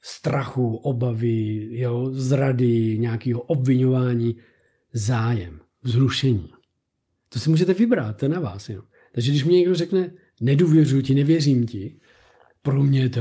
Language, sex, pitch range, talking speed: Czech, male, 120-150 Hz, 135 wpm